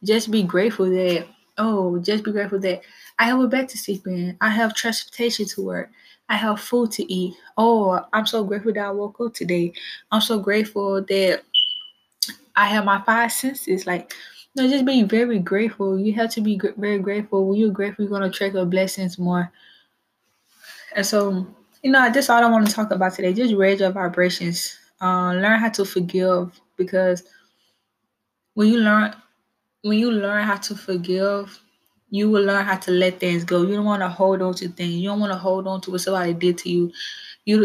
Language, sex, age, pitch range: English, female, 20-39, 185-215 Hz